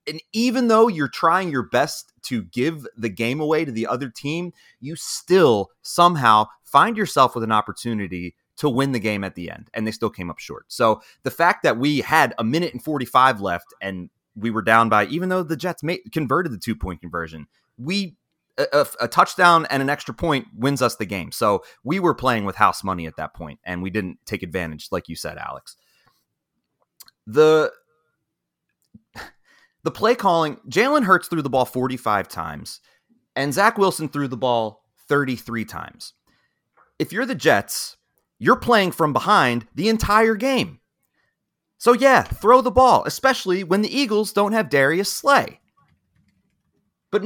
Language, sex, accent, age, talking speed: English, male, American, 30-49, 175 wpm